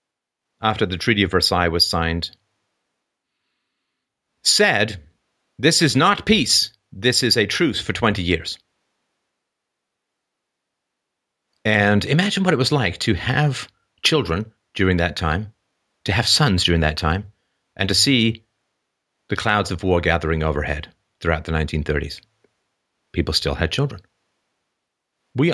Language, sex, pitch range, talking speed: English, male, 85-110 Hz, 125 wpm